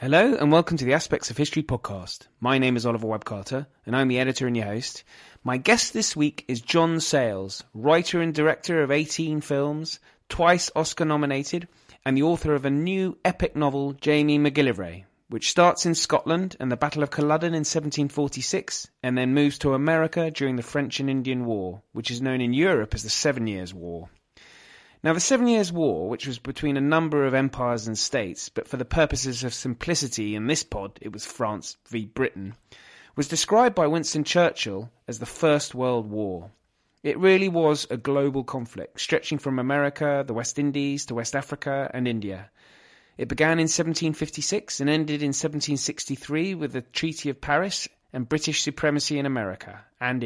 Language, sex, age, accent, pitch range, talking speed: English, male, 30-49, British, 125-155 Hz, 185 wpm